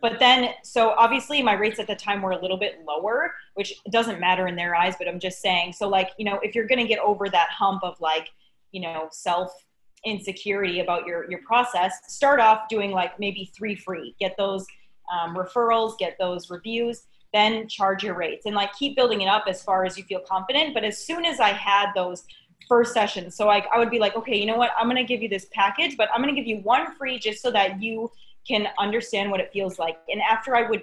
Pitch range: 190-235 Hz